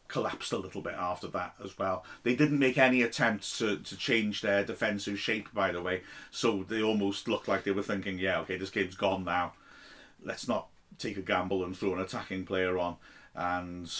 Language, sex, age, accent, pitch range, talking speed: English, male, 40-59, British, 100-140 Hz, 205 wpm